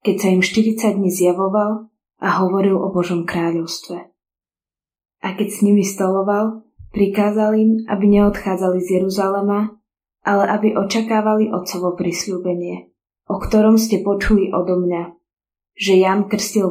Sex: female